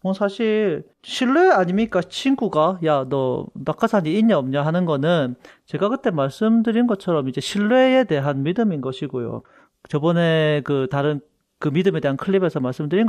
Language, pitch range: Korean, 150-225 Hz